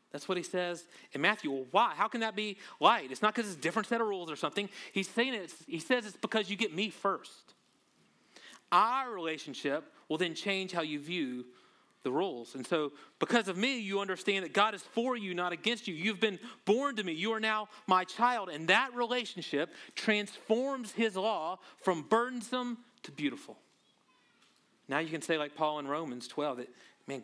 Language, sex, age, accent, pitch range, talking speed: English, male, 30-49, American, 160-220 Hz, 200 wpm